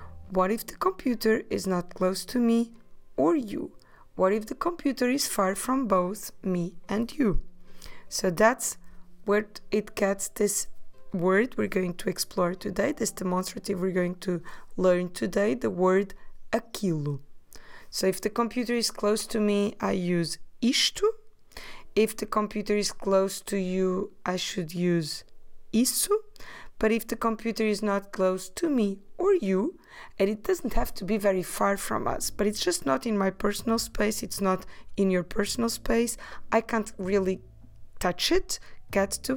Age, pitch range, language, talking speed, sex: 20-39, 180-230 Hz, English, 165 wpm, female